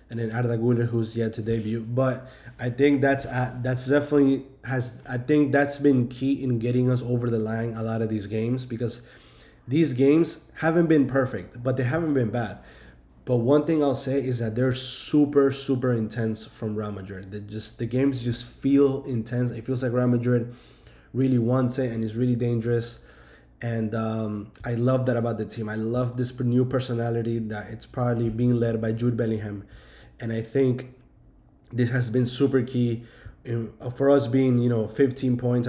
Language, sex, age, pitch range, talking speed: English, male, 20-39, 115-130 Hz, 185 wpm